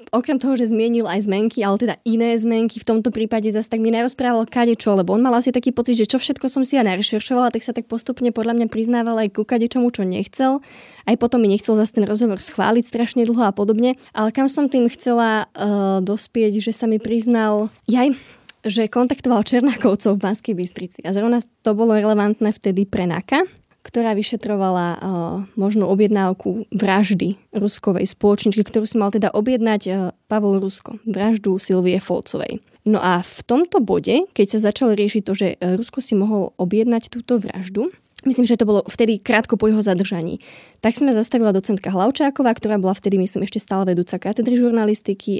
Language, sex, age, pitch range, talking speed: Slovak, female, 20-39, 195-230 Hz, 185 wpm